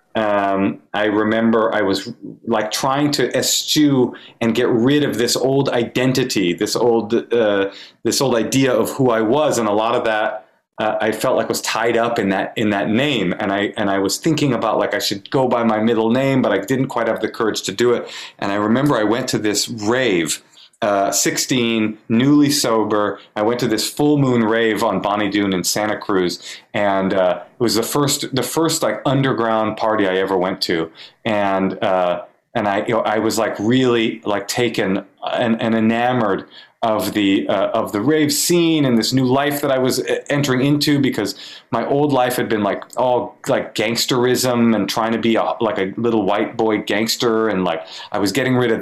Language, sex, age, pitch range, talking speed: English, male, 30-49, 105-130 Hz, 205 wpm